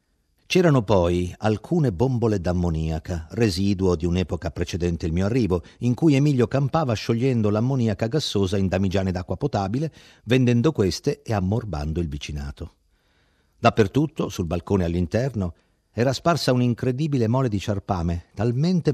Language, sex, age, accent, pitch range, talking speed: Italian, male, 50-69, native, 85-125 Hz, 125 wpm